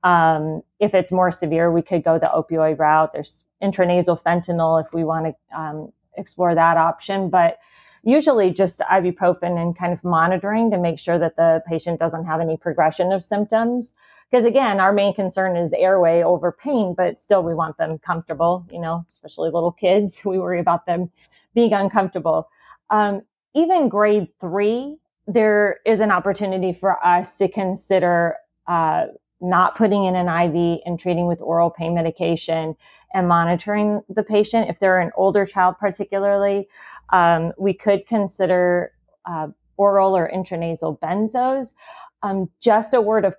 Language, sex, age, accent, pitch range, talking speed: English, female, 30-49, American, 170-200 Hz, 160 wpm